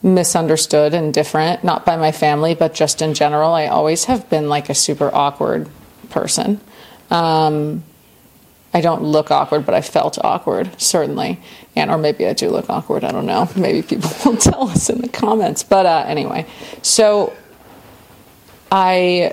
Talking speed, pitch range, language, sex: 165 wpm, 150-175 Hz, English, female